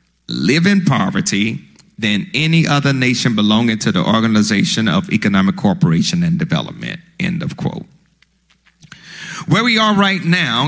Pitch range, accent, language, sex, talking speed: 140-180 Hz, American, English, male, 135 wpm